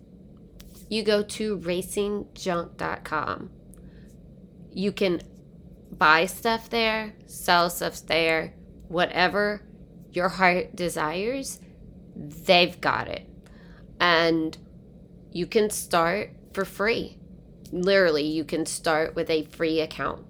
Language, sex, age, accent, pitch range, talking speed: English, female, 20-39, American, 165-195 Hz, 100 wpm